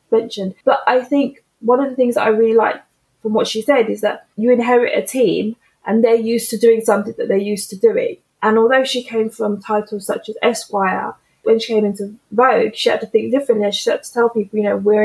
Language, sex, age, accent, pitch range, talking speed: English, female, 20-39, British, 210-245 Hz, 245 wpm